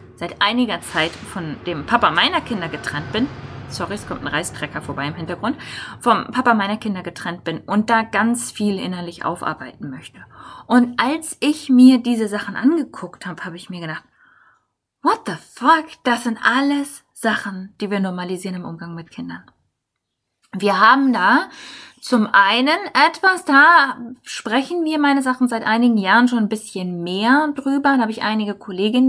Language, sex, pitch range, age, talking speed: German, female, 185-260 Hz, 20-39, 165 wpm